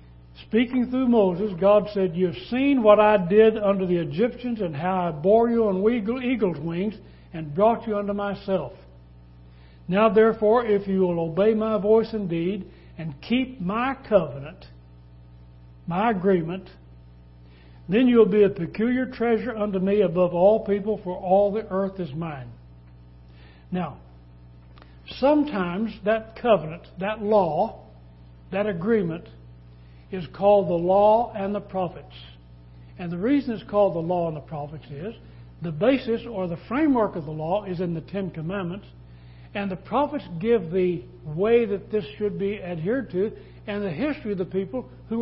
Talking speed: 155 wpm